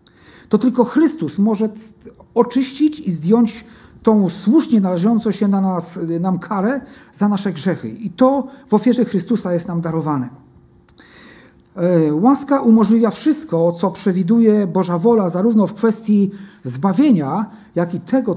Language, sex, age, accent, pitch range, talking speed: Polish, male, 50-69, native, 175-240 Hz, 125 wpm